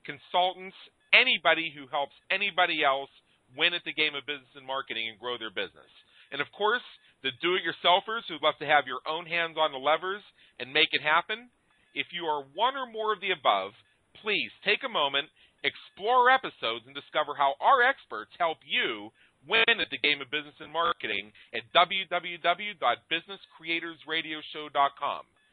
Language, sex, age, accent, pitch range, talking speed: English, male, 40-59, American, 145-185 Hz, 160 wpm